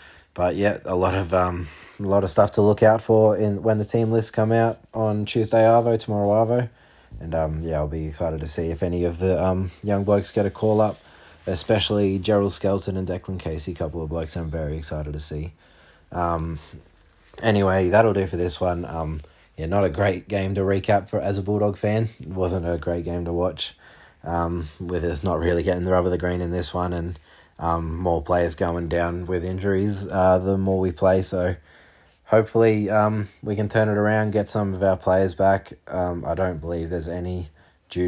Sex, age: male, 20-39